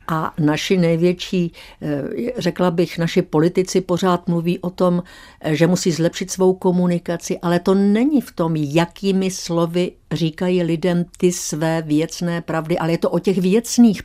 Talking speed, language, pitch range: 150 wpm, Czech, 155-185 Hz